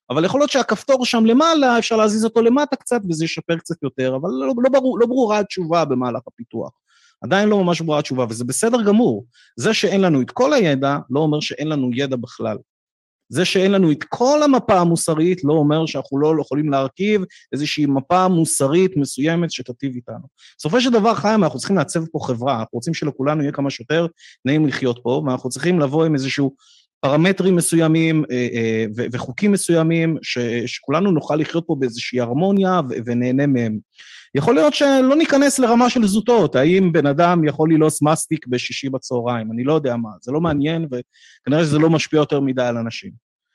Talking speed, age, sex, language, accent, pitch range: 180 wpm, 30-49, male, Hebrew, native, 130-195 Hz